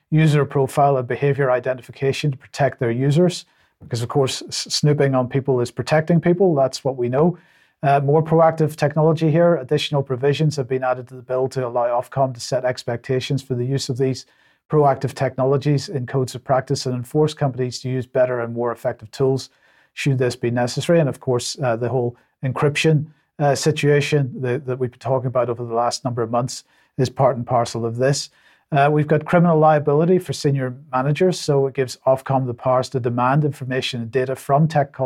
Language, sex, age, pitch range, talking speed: English, male, 40-59, 130-150 Hz, 195 wpm